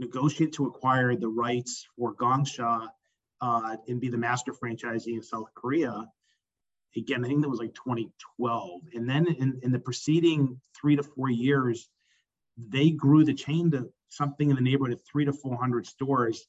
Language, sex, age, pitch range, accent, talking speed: English, male, 40-59, 120-140 Hz, American, 170 wpm